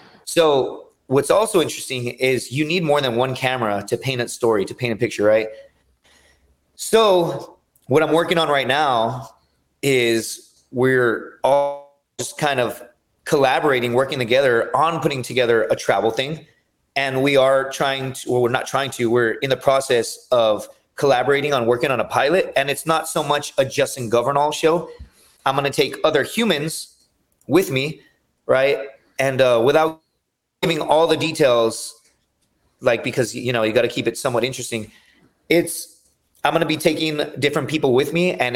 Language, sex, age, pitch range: English, male, 30-49, 120-155 Hz